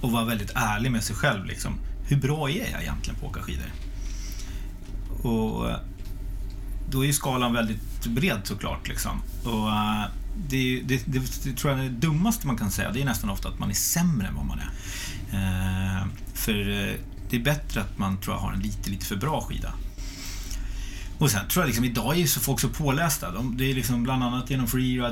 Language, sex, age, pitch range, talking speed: English, male, 30-49, 95-120 Hz, 205 wpm